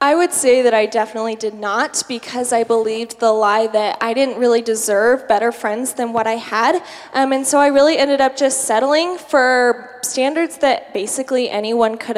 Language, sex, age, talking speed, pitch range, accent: English, female, 10-29, 190 wpm, 215-270 Hz, American